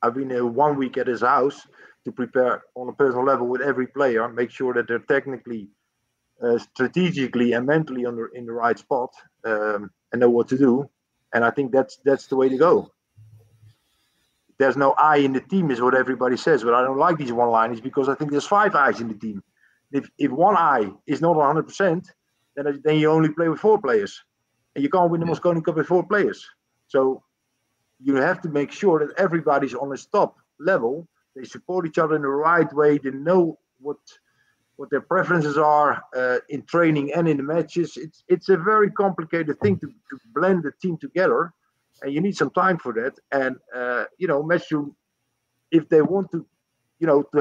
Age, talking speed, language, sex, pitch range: 50-69, 205 wpm, English, male, 125-165 Hz